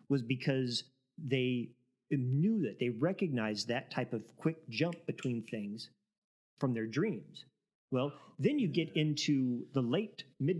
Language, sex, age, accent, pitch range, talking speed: English, male, 40-59, American, 125-165 Hz, 140 wpm